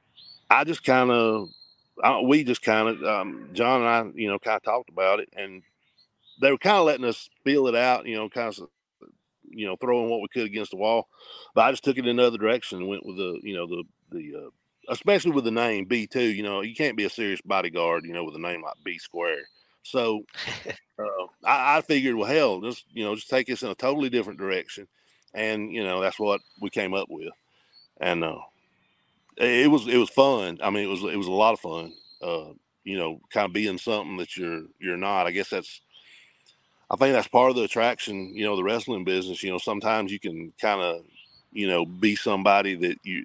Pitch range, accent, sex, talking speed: 95-125 Hz, American, male, 225 wpm